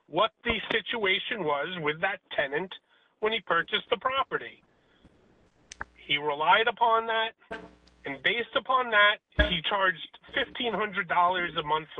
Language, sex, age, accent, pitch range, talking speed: English, male, 30-49, American, 175-245 Hz, 125 wpm